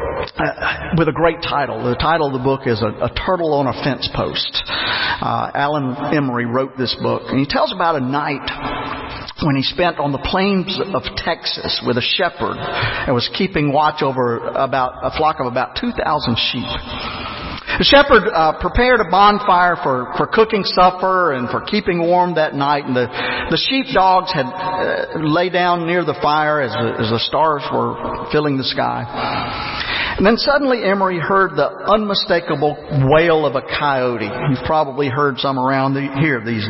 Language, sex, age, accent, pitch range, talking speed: English, male, 50-69, American, 130-185 Hz, 175 wpm